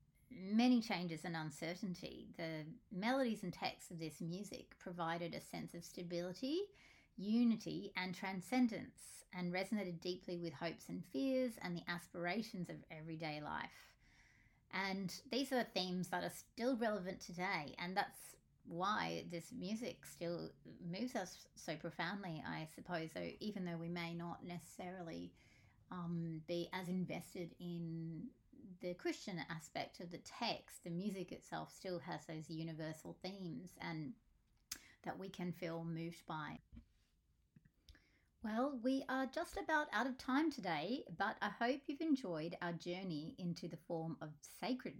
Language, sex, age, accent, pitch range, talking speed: English, female, 30-49, Australian, 165-210 Hz, 145 wpm